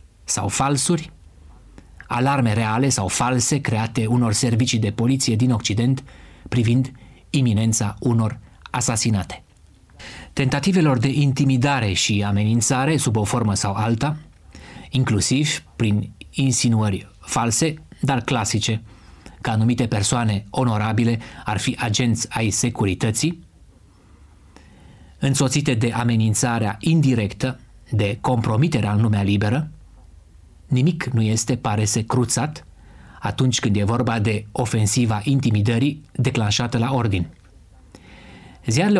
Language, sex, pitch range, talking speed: Romanian, male, 100-130 Hz, 105 wpm